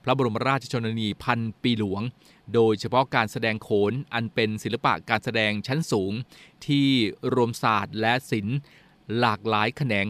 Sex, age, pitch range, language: male, 20-39, 110-135 Hz, Thai